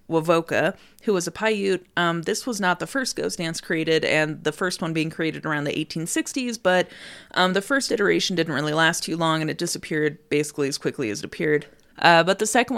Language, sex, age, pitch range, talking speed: English, female, 30-49, 165-220 Hz, 215 wpm